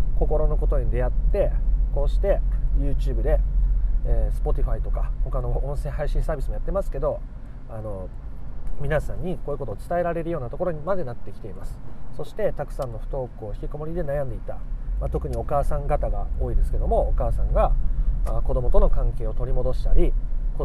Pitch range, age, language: 120-150 Hz, 30-49, Japanese